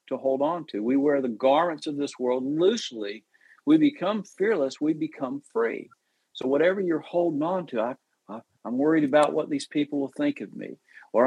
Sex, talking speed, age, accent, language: male, 195 wpm, 50-69, American, English